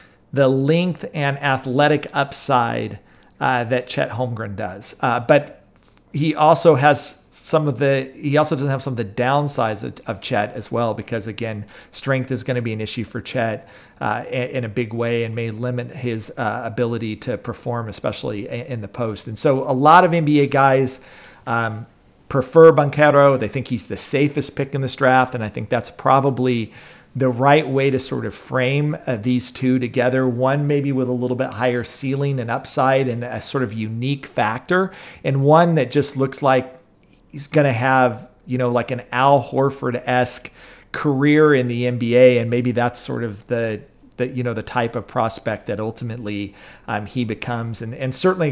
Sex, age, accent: male, 40-59, American